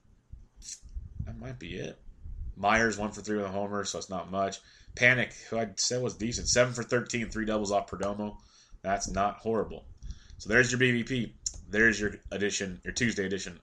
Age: 30-49